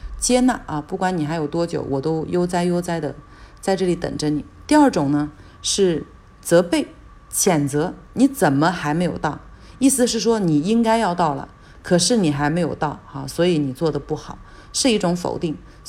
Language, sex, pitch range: Chinese, female, 140-180 Hz